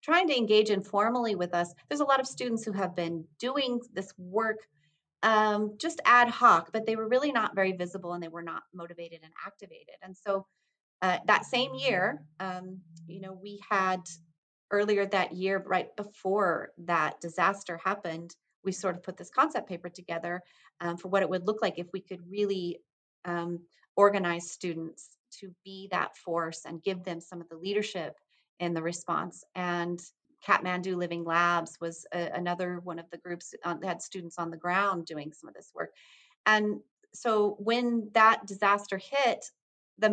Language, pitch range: English, 175-215 Hz